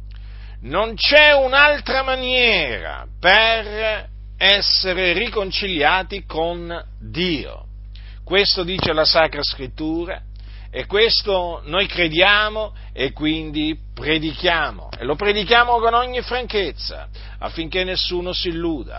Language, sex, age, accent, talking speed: Italian, male, 50-69, native, 100 wpm